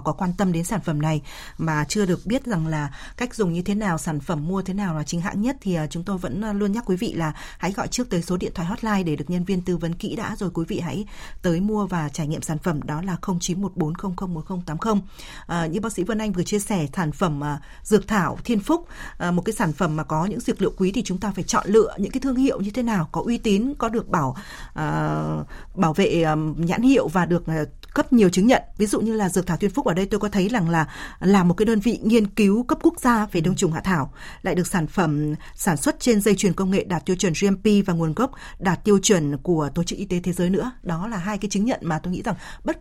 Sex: female